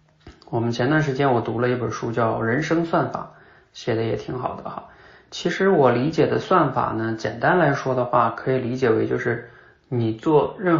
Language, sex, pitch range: Chinese, male, 115-145 Hz